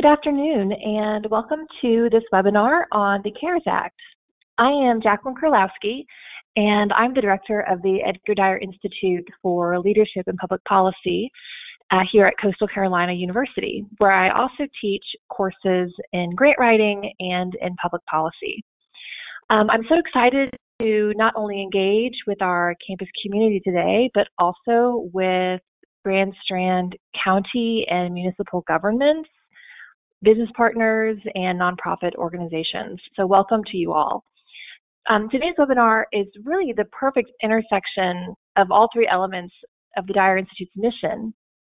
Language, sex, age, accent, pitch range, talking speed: English, female, 30-49, American, 190-240 Hz, 140 wpm